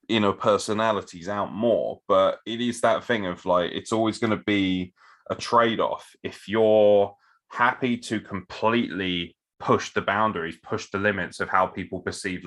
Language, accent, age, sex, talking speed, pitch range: English, British, 20-39, male, 160 wpm, 90-115 Hz